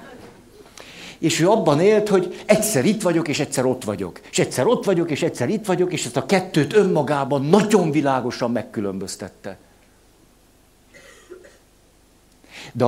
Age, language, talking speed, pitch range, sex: 60-79, Hungarian, 135 wpm, 120-165 Hz, male